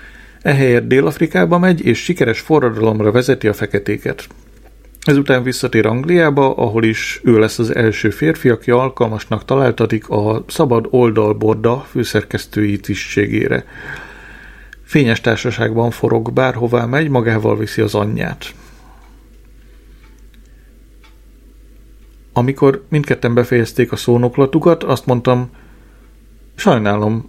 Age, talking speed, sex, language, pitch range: 40-59, 95 wpm, male, Hungarian, 110-125 Hz